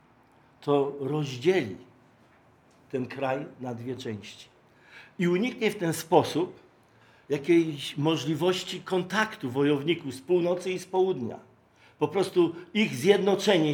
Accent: native